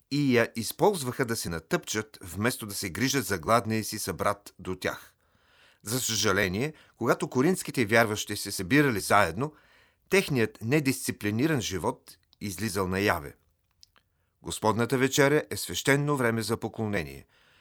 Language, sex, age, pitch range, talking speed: Bulgarian, male, 40-59, 100-135 Hz, 125 wpm